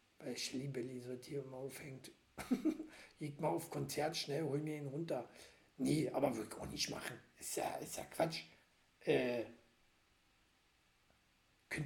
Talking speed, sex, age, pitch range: 135 wpm, male, 60-79, 145-200 Hz